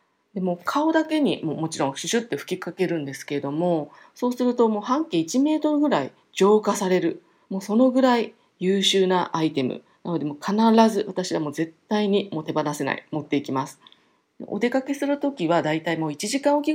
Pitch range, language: 150-225 Hz, Japanese